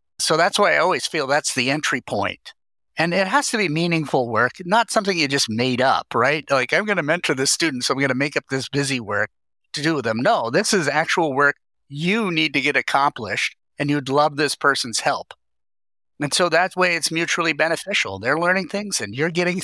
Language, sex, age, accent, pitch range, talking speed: English, male, 50-69, American, 115-165 Hz, 225 wpm